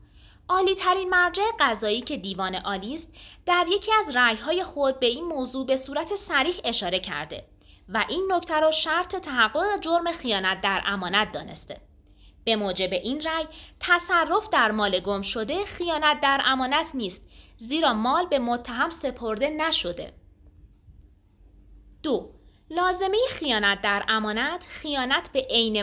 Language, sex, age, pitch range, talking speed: Persian, female, 20-39, 205-335 Hz, 135 wpm